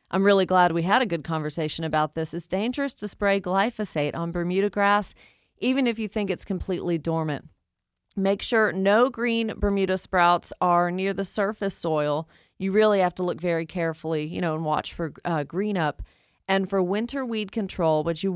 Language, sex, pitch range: English, female, 165-195 Hz